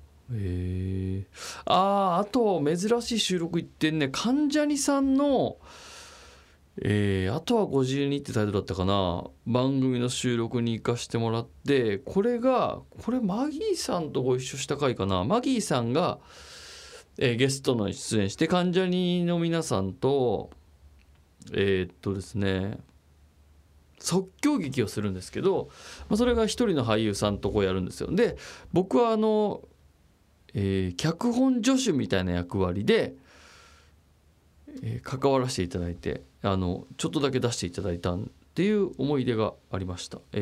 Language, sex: Japanese, male